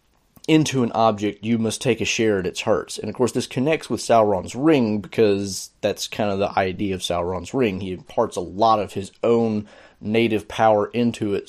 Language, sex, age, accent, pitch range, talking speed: English, male, 30-49, American, 105-135 Hz, 205 wpm